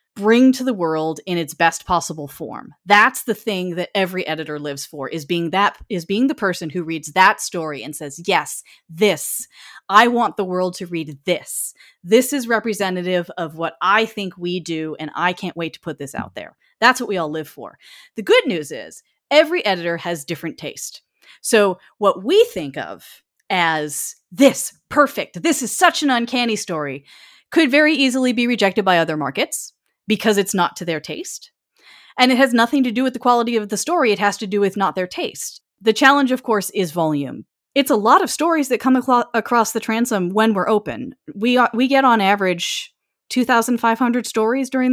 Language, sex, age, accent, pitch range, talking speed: English, female, 30-49, American, 175-245 Hz, 200 wpm